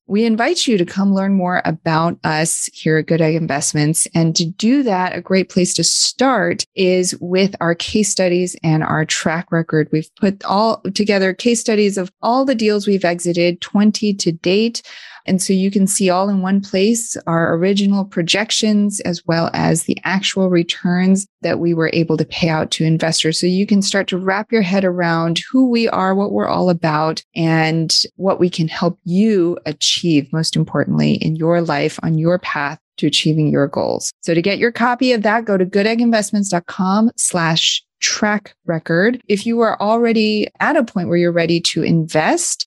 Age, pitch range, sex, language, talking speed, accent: 30-49, 165-205 Hz, female, English, 190 wpm, American